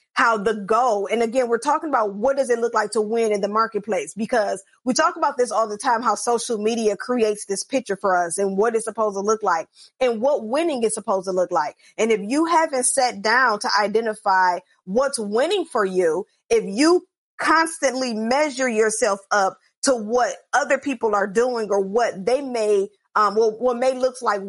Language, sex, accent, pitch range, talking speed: English, female, American, 215-275 Hz, 205 wpm